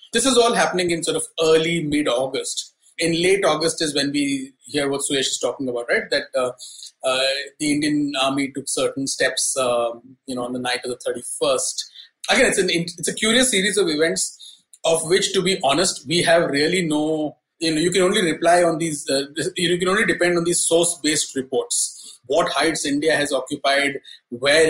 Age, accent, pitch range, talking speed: 30-49, Indian, 130-175 Hz, 195 wpm